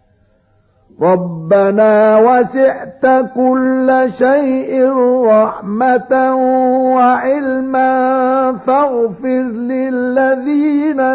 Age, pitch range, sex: 50-69, 200-260 Hz, male